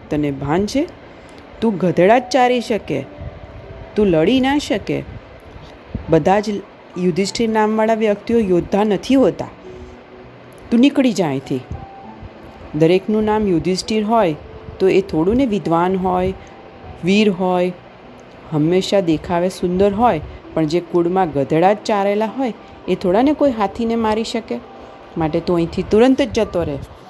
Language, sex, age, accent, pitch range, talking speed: Gujarati, female, 40-59, native, 140-200 Hz, 130 wpm